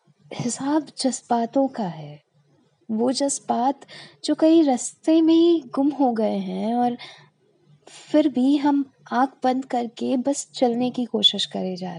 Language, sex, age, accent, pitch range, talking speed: Hindi, female, 20-39, native, 185-255 Hz, 140 wpm